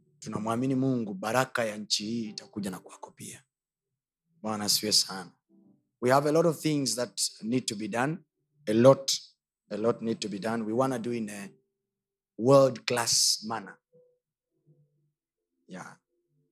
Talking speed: 110 wpm